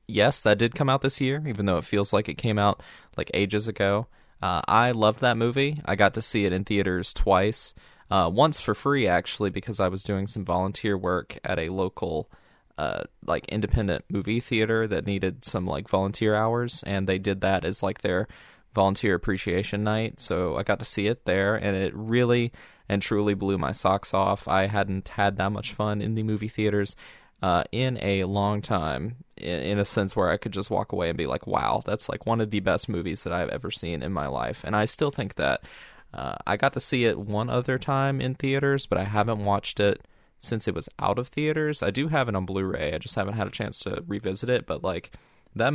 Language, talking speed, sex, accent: English, 225 wpm, male, American